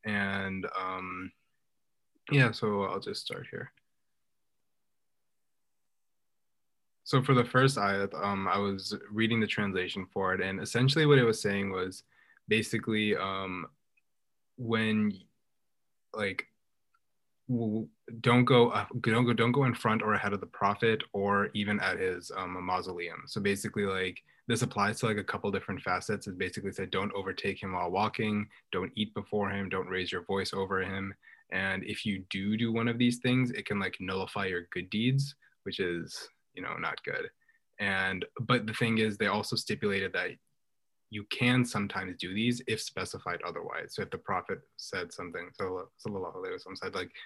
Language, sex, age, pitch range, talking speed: English, male, 20-39, 95-115 Hz, 165 wpm